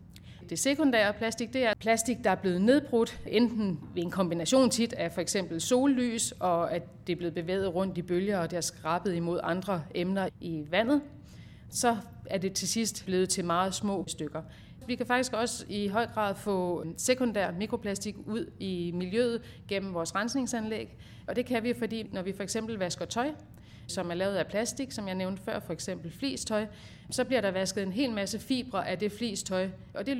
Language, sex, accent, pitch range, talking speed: Danish, female, native, 180-230 Hz, 195 wpm